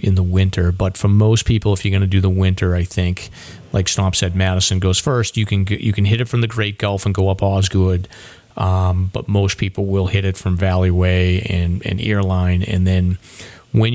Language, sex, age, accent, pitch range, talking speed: English, male, 40-59, American, 95-110 Hz, 220 wpm